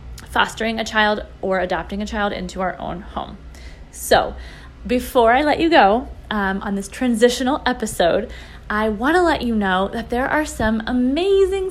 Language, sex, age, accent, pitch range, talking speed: English, female, 20-39, American, 205-270 Hz, 170 wpm